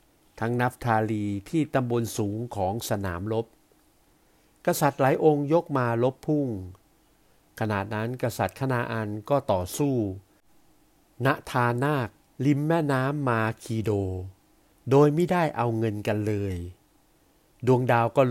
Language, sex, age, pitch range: Thai, male, 60-79, 105-140 Hz